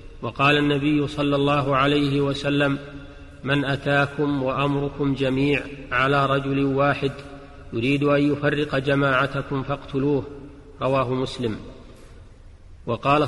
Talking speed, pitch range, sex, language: 95 wpm, 135-145 Hz, male, Arabic